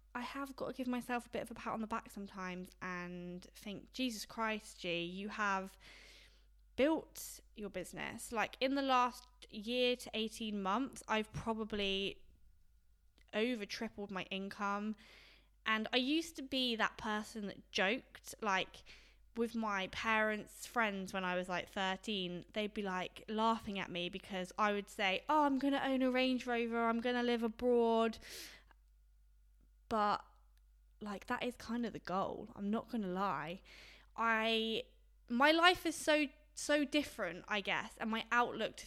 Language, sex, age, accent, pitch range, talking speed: English, female, 10-29, British, 190-245 Hz, 165 wpm